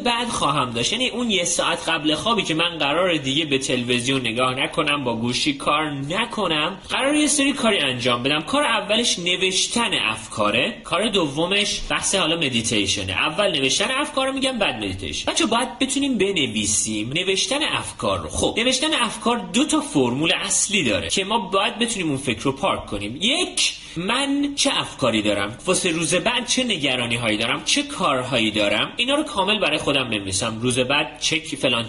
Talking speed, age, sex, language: 170 wpm, 30-49, male, Persian